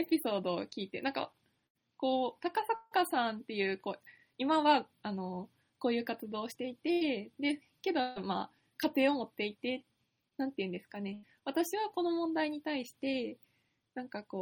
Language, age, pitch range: Japanese, 20-39, 200-290 Hz